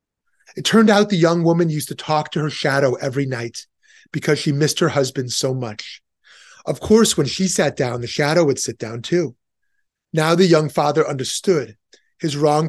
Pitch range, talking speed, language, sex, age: 140-175 Hz, 190 wpm, English, male, 30-49